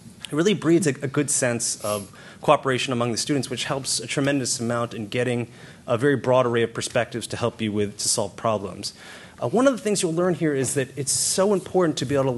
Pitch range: 115-145 Hz